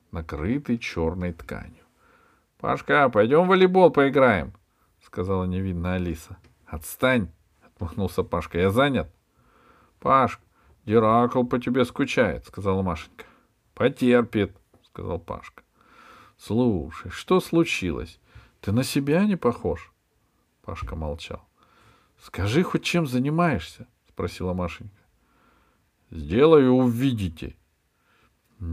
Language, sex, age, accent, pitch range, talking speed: Russian, male, 50-69, native, 85-125 Hz, 95 wpm